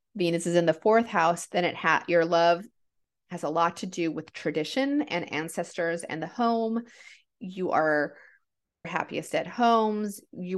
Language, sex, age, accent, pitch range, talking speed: English, female, 30-49, American, 160-205 Hz, 165 wpm